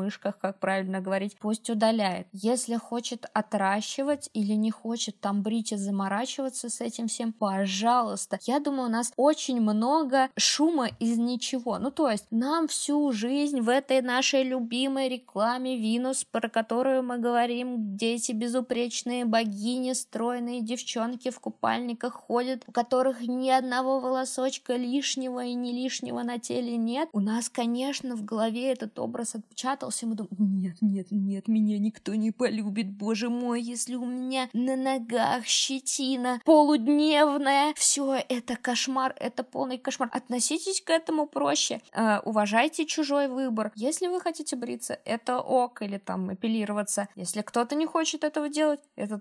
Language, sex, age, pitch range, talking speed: Russian, female, 20-39, 220-265 Hz, 145 wpm